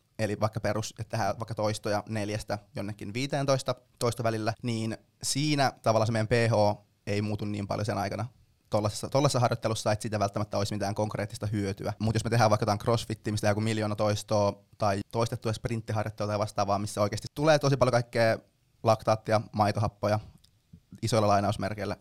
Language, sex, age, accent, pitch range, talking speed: Finnish, male, 20-39, native, 105-120 Hz, 155 wpm